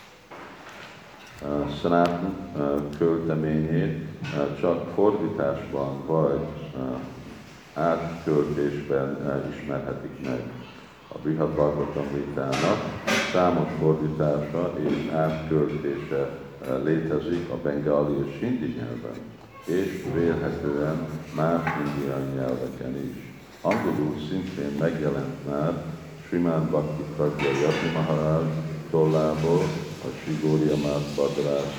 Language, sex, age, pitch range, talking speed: Hungarian, male, 50-69, 70-80 Hz, 70 wpm